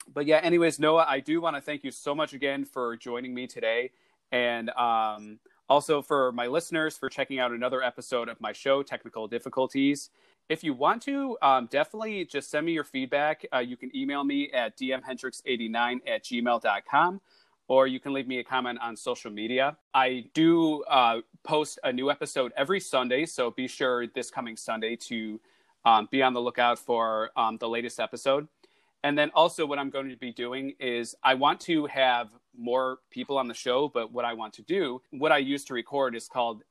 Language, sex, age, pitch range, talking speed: English, male, 30-49, 120-145 Hz, 200 wpm